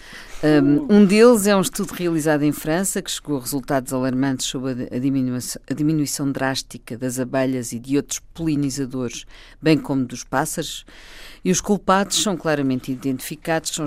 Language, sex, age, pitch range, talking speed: Portuguese, female, 50-69, 135-165 Hz, 150 wpm